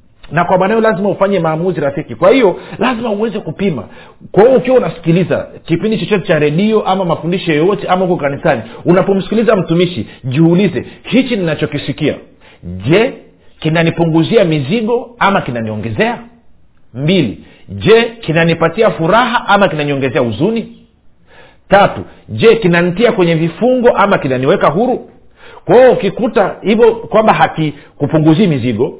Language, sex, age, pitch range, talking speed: Swahili, male, 50-69, 145-205 Hz, 120 wpm